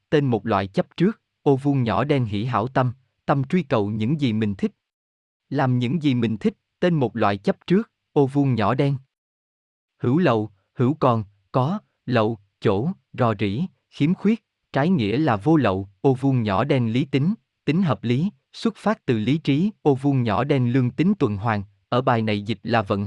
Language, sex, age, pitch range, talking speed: Vietnamese, male, 20-39, 110-150 Hz, 200 wpm